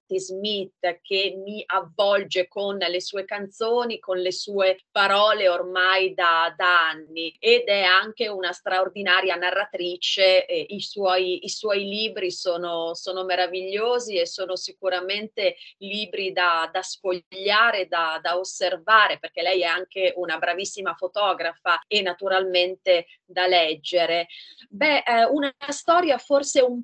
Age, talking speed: 30-49, 125 wpm